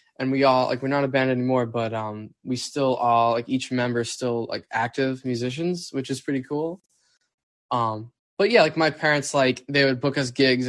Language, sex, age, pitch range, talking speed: English, male, 10-29, 120-150 Hz, 215 wpm